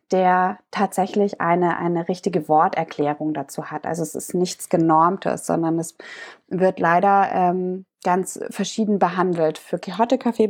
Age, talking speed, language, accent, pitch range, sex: 20-39, 135 wpm, German, German, 165-195 Hz, female